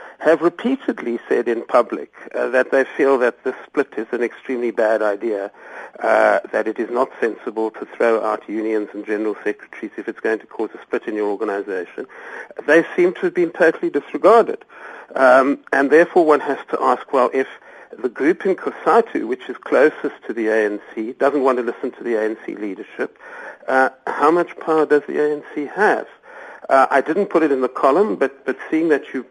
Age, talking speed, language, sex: 50-69, 195 wpm, English, male